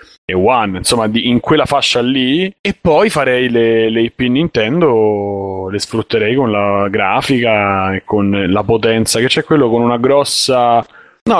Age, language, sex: 30-49, Italian, male